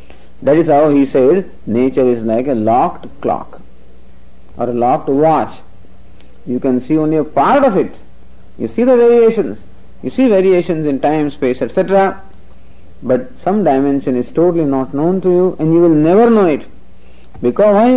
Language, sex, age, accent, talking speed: English, male, 50-69, Indian, 170 wpm